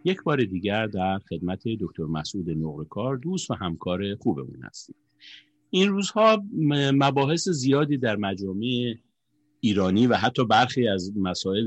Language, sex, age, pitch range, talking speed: Persian, male, 50-69, 95-140 Hz, 130 wpm